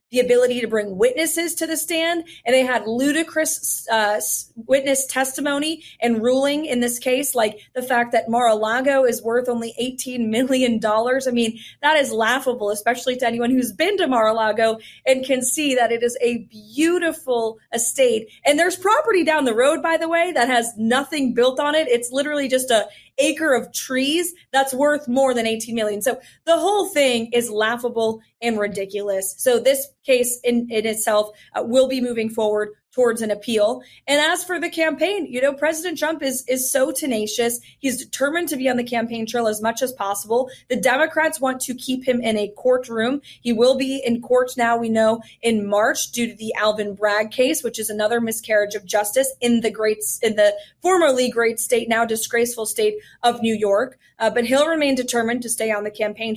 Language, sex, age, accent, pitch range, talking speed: English, female, 30-49, American, 225-275 Hz, 195 wpm